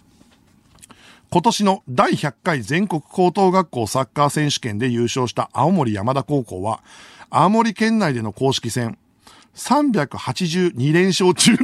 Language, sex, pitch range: Japanese, male, 125-190 Hz